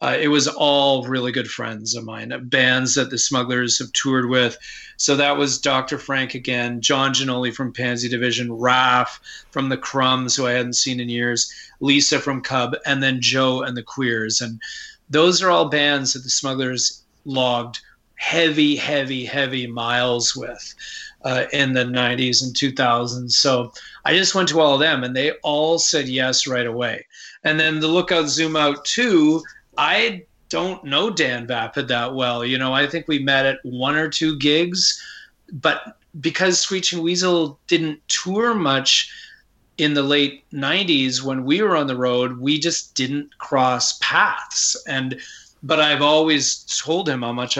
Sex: male